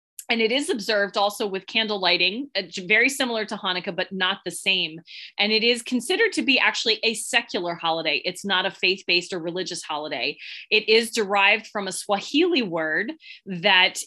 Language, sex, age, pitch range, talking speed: English, female, 20-39, 180-220 Hz, 185 wpm